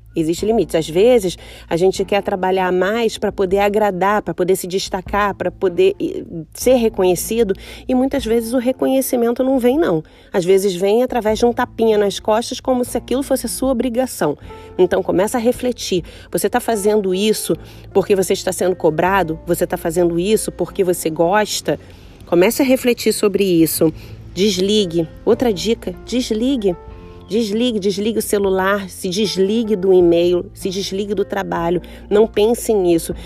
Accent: Brazilian